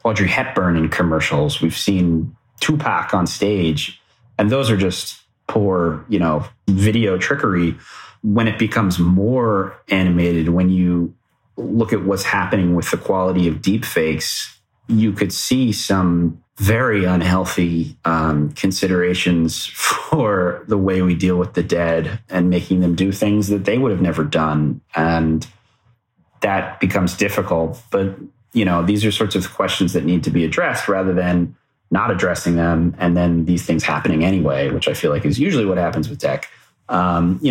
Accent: American